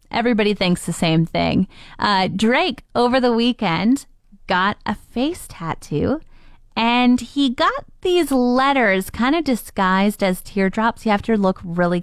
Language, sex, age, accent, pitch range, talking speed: English, female, 20-39, American, 185-275 Hz, 145 wpm